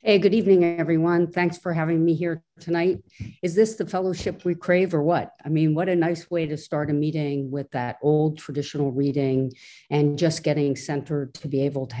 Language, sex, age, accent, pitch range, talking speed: English, female, 50-69, American, 130-155 Hz, 205 wpm